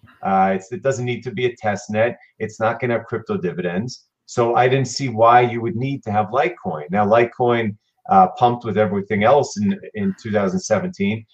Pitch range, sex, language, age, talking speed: 110-175 Hz, male, English, 40-59, 195 wpm